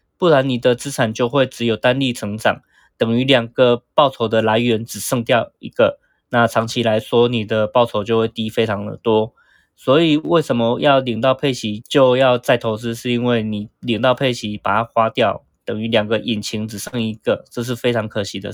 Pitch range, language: 115-135 Hz, Chinese